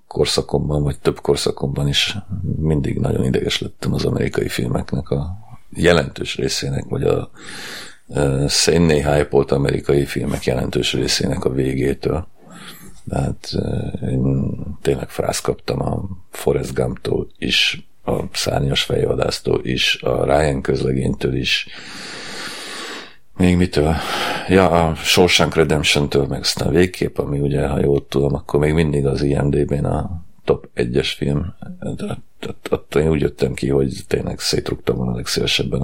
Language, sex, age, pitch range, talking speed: Hungarian, male, 50-69, 70-85 Hz, 125 wpm